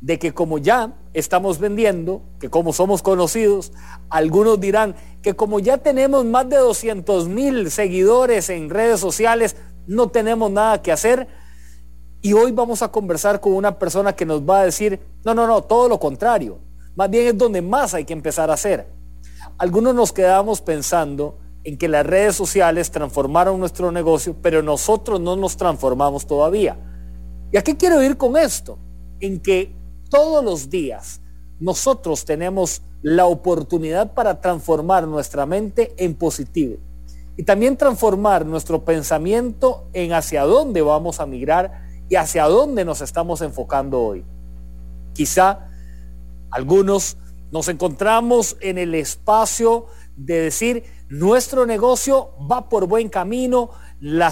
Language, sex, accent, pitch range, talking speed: English, male, Mexican, 150-220 Hz, 145 wpm